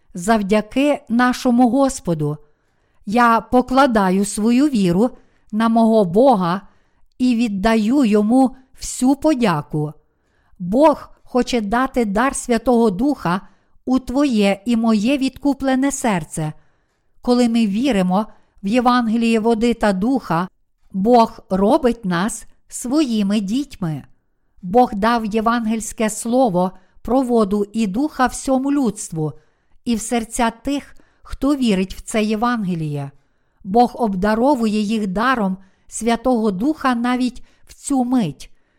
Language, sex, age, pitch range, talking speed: Ukrainian, female, 50-69, 210-255 Hz, 110 wpm